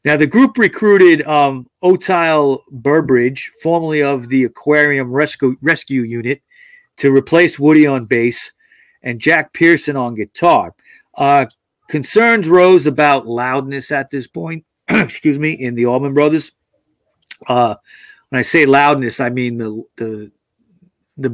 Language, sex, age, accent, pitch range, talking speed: English, male, 40-59, American, 125-165 Hz, 130 wpm